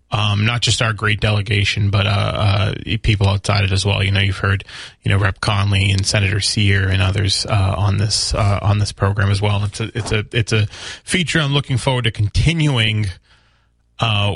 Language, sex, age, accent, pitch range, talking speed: English, male, 20-39, American, 105-125 Hz, 205 wpm